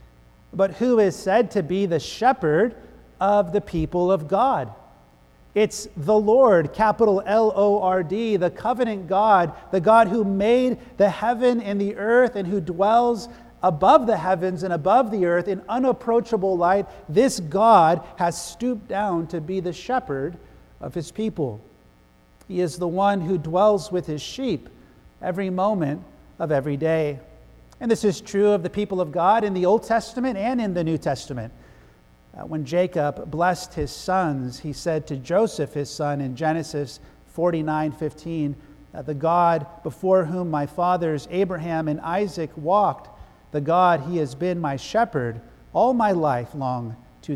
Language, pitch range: English, 150-200 Hz